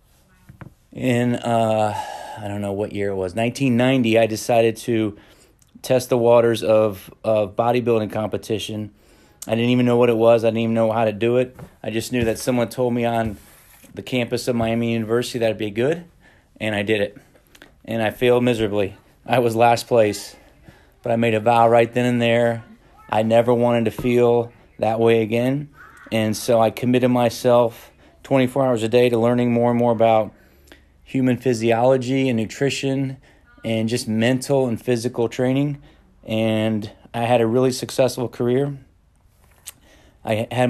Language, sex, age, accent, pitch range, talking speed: English, male, 30-49, American, 110-125 Hz, 170 wpm